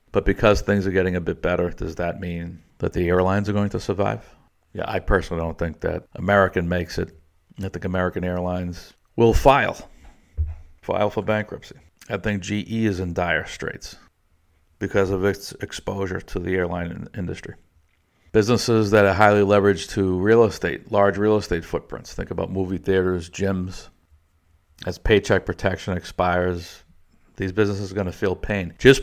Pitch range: 85-105 Hz